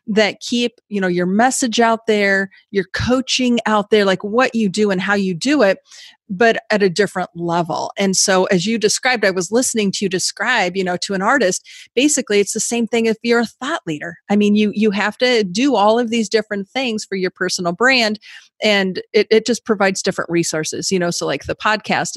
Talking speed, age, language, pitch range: 220 wpm, 40-59, English, 190-240 Hz